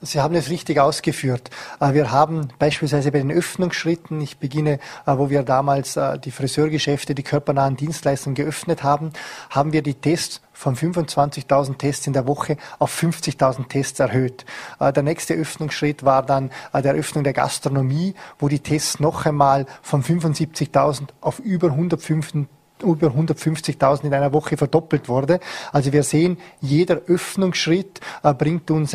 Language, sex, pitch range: German, male, 140-165 Hz